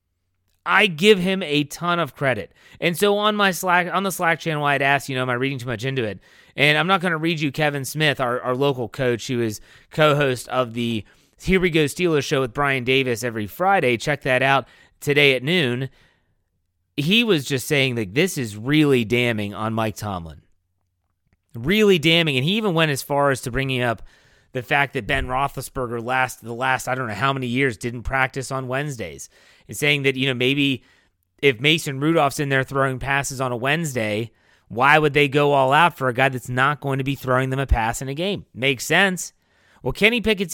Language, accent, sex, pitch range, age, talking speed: English, American, male, 125-160 Hz, 30-49, 215 wpm